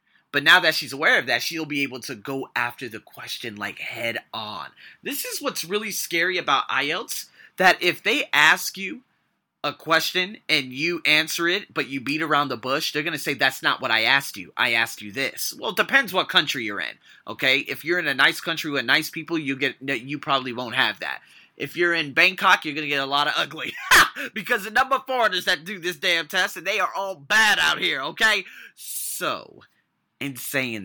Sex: male